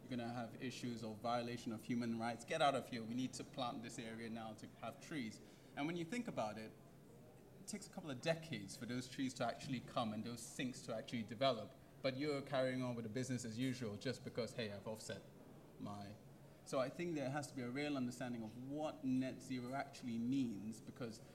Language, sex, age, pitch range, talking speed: English, male, 20-39, 115-140 Hz, 220 wpm